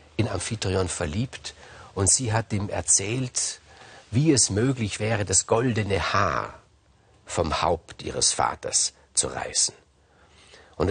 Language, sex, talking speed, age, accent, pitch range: German, male, 120 wpm, 60-79, German, 100-135 Hz